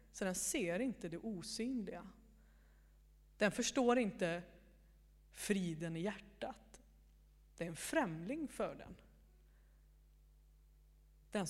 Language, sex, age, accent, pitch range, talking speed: Swedish, female, 30-49, native, 175-235 Hz, 100 wpm